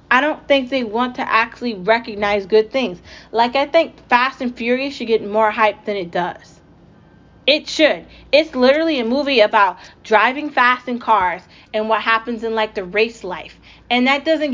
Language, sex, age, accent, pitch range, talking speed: English, female, 30-49, American, 220-275 Hz, 185 wpm